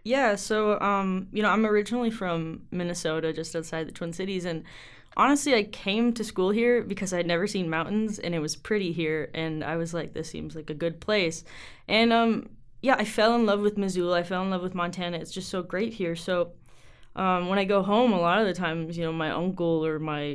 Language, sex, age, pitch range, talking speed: English, female, 20-39, 175-225 Hz, 230 wpm